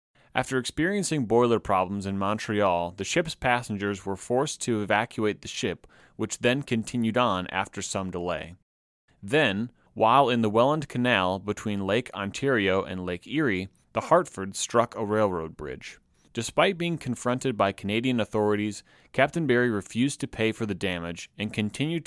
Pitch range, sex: 100-125 Hz, male